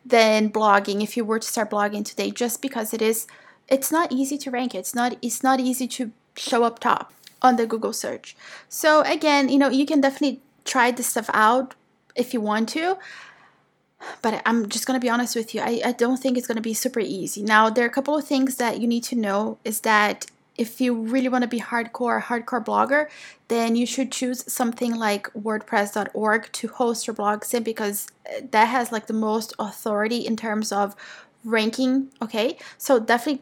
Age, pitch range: 20-39, 225-260 Hz